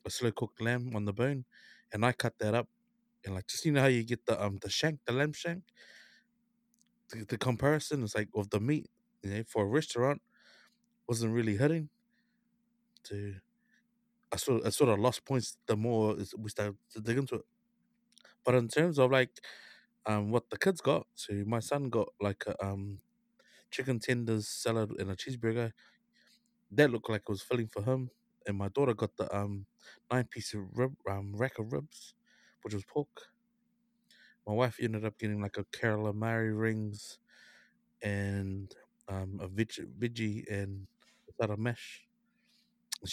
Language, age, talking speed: English, 20-39, 175 wpm